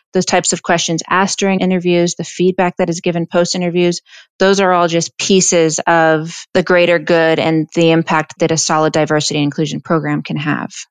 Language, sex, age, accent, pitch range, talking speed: English, female, 20-39, American, 160-180 Hz, 185 wpm